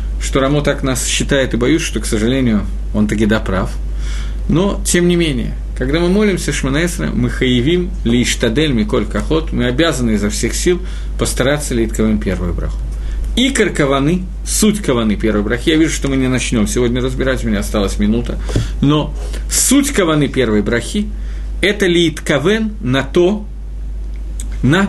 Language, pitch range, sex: Russian, 105-165 Hz, male